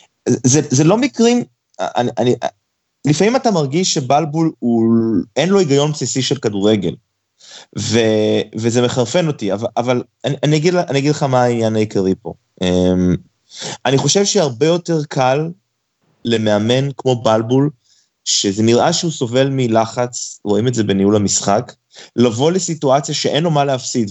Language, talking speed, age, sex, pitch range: Hebrew, 140 wpm, 20-39, male, 115-150 Hz